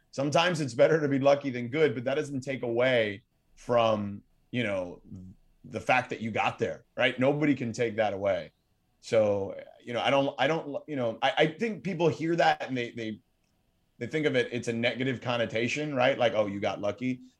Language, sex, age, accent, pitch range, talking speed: English, male, 30-49, American, 110-140 Hz, 205 wpm